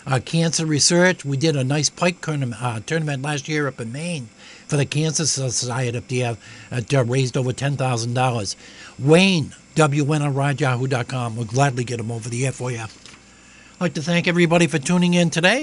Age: 60-79